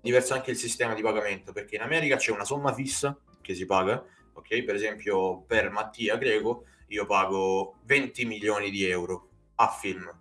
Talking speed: 175 wpm